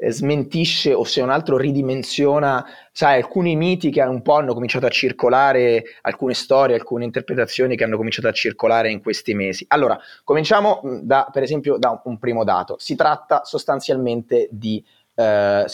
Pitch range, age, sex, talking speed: 115-170 Hz, 30-49, male, 160 wpm